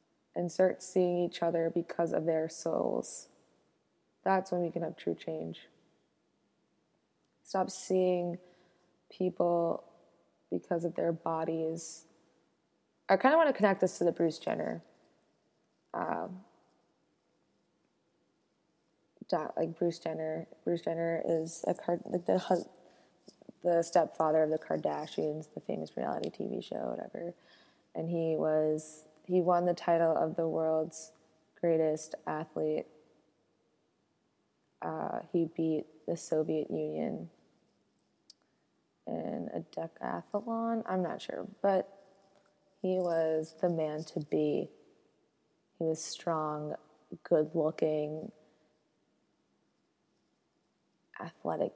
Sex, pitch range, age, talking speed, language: female, 155-175 Hz, 20-39, 105 wpm, English